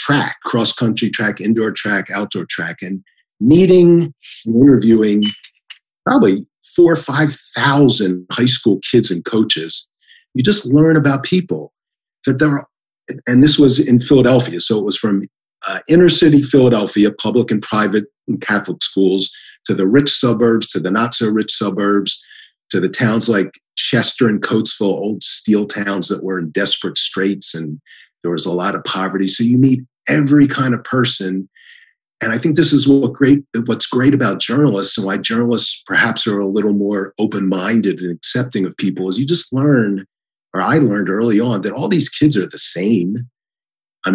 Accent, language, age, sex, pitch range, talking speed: American, English, 50-69, male, 100-130 Hz, 165 wpm